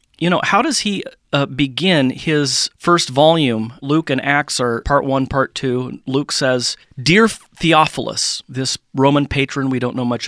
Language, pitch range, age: English, 130-165 Hz, 40-59